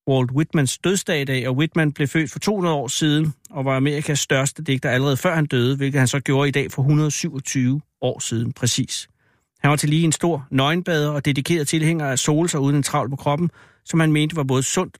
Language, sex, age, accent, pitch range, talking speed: Danish, male, 60-79, native, 130-155 Hz, 225 wpm